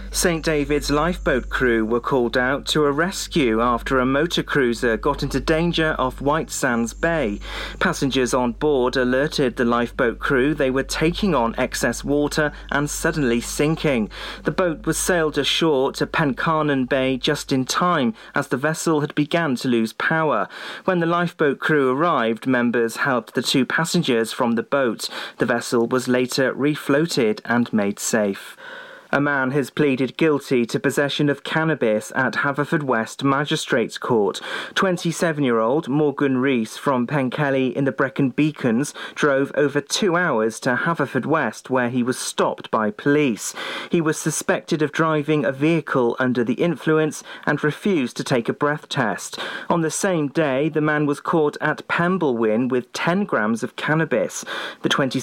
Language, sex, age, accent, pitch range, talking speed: English, male, 40-59, British, 125-160 Hz, 160 wpm